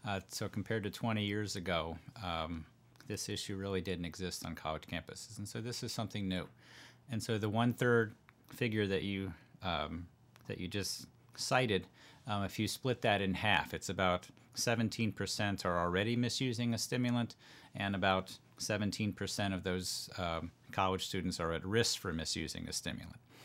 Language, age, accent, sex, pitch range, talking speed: English, 40-59, American, male, 90-110 Hz, 165 wpm